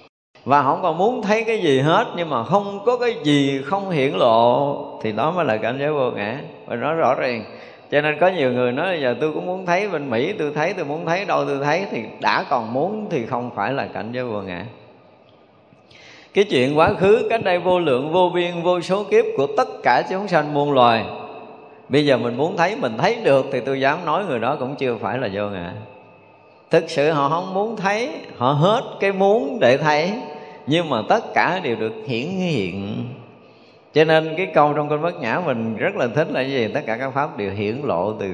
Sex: male